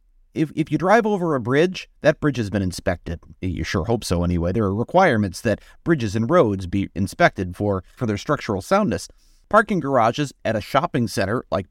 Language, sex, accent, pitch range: English, male, American, 105-150 Hz